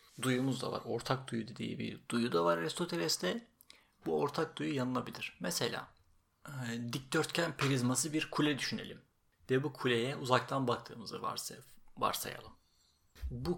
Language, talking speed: Turkish, 130 wpm